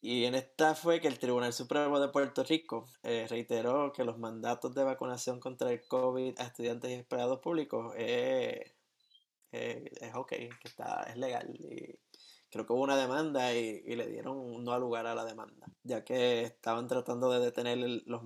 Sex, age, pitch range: male, 20-39, 120-140 Hz